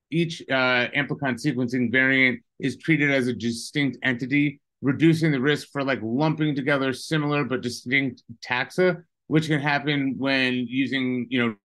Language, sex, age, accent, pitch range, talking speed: English, male, 30-49, American, 120-140 Hz, 150 wpm